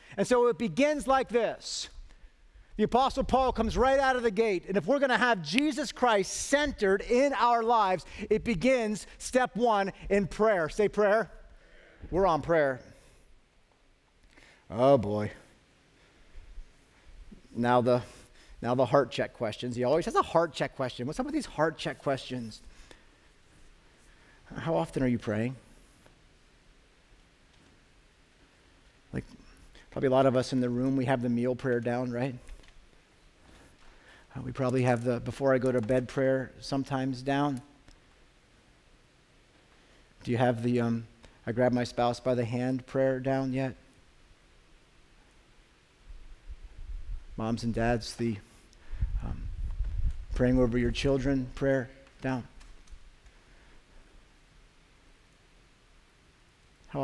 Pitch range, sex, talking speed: 120-190 Hz, male, 130 wpm